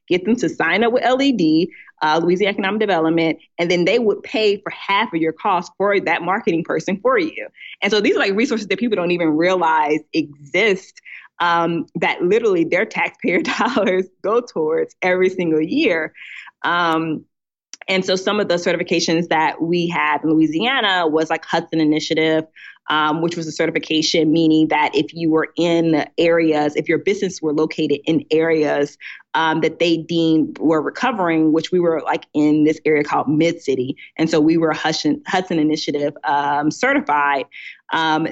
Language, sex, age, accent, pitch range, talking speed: English, female, 20-39, American, 155-185 Hz, 170 wpm